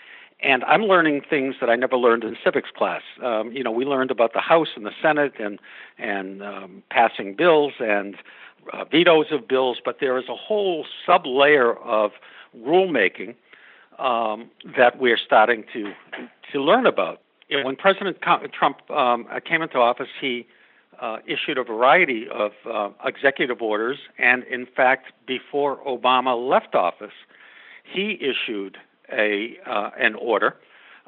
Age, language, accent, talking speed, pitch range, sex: 60-79, English, American, 155 wpm, 115-145 Hz, male